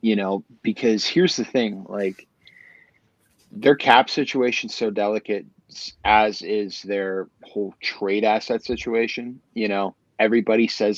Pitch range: 100-115 Hz